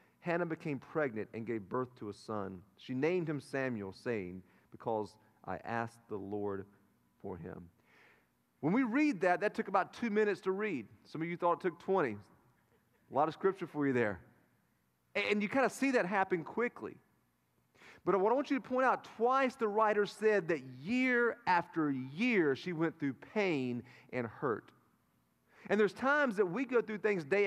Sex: male